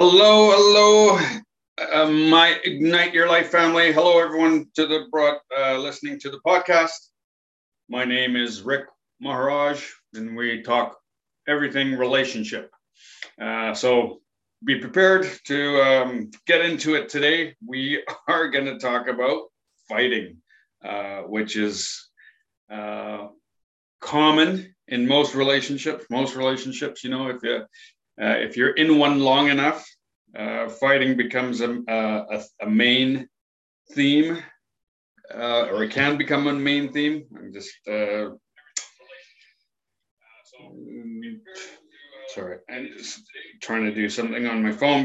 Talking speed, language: 125 wpm, English